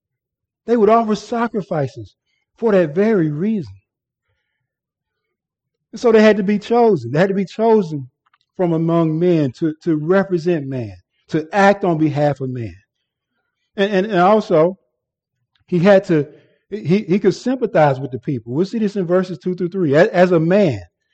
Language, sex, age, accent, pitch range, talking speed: English, male, 50-69, American, 150-195 Hz, 165 wpm